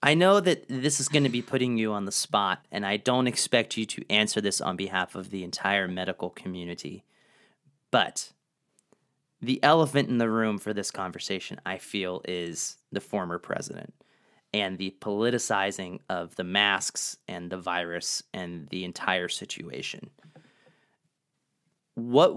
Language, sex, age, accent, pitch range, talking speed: English, male, 30-49, American, 100-130 Hz, 155 wpm